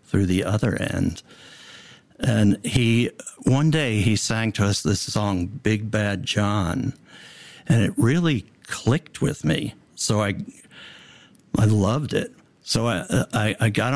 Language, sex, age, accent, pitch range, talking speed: English, male, 60-79, American, 95-120 Hz, 140 wpm